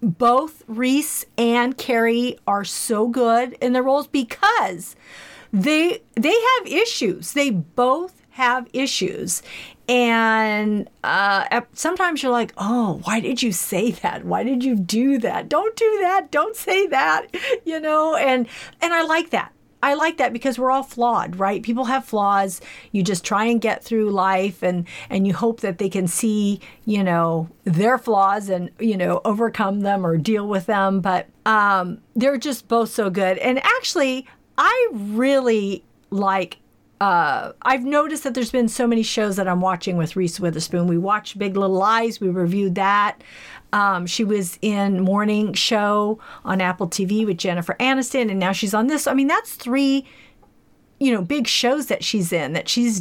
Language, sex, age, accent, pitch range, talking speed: English, female, 40-59, American, 195-255 Hz, 170 wpm